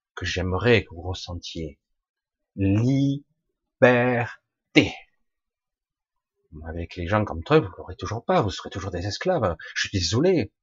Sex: male